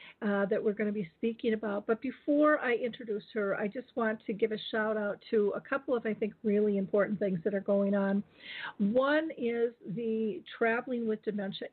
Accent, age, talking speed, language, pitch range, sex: American, 50-69, 205 wpm, English, 205-225 Hz, female